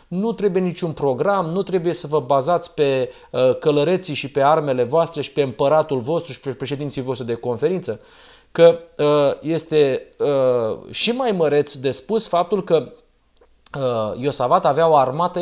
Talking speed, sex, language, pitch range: 165 wpm, male, Romanian, 140-180 Hz